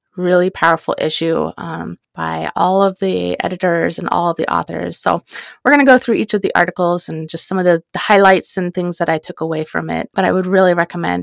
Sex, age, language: female, 20-39, English